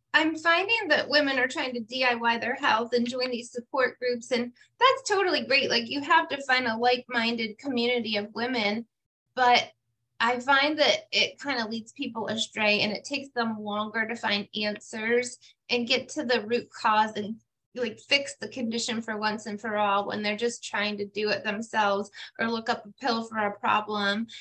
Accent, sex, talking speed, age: American, female, 195 wpm, 20-39